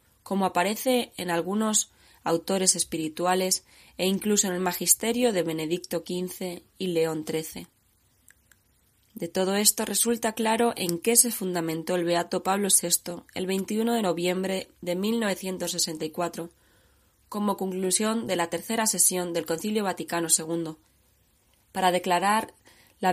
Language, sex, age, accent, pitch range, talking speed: Spanish, female, 20-39, Spanish, 170-200 Hz, 125 wpm